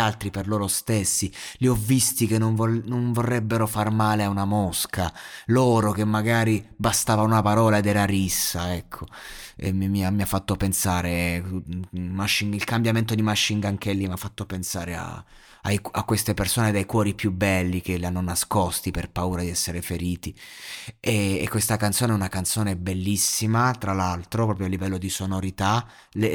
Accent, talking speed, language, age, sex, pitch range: native, 180 wpm, Italian, 30-49, male, 100-115 Hz